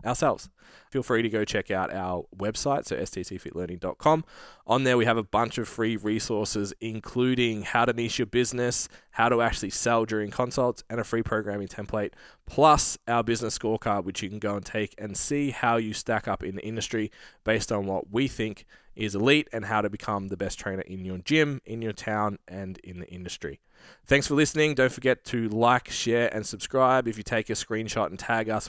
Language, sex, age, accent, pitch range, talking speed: English, male, 20-39, Australian, 95-115 Hz, 205 wpm